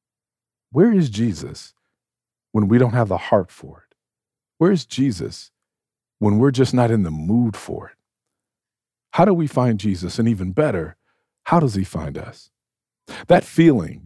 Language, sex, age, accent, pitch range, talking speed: English, male, 50-69, American, 100-130 Hz, 160 wpm